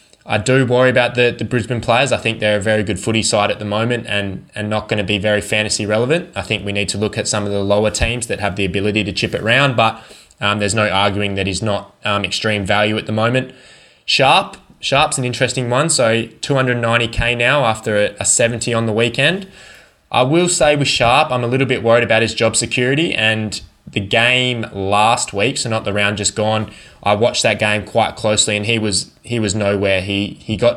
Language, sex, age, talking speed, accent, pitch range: English, male, 10-29, 230 wpm, Australian, 100-115 Hz